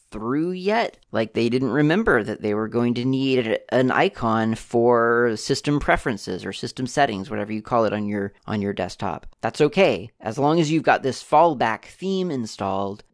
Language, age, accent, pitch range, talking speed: English, 30-49, American, 110-145 Hz, 185 wpm